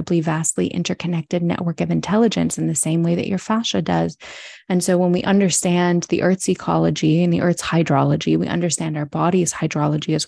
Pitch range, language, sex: 165-180 Hz, English, female